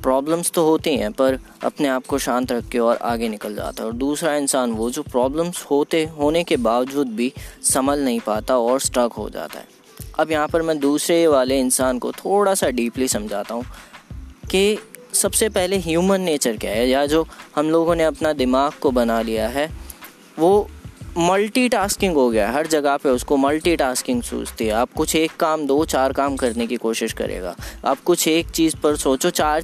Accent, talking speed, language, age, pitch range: native, 195 wpm, Hindi, 20-39, 120-160 Hz